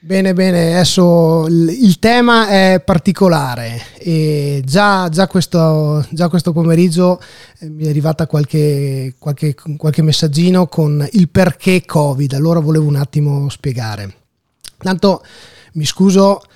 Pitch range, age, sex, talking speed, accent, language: 135-170 Hz, 20-39, male, 120 wpm, native, Italian